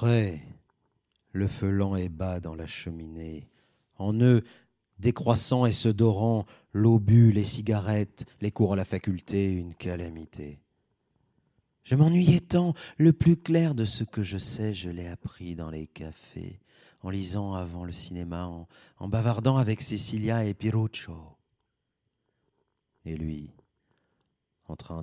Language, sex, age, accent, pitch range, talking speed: French, male, 40-59, French, 85-115 Hz, 140 wpm